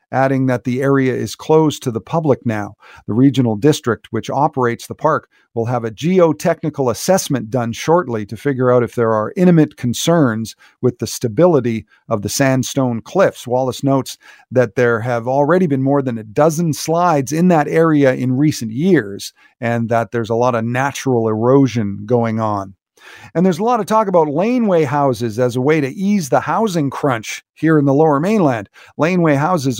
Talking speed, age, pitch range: 185 wpm, 50-69, 120-165 Hz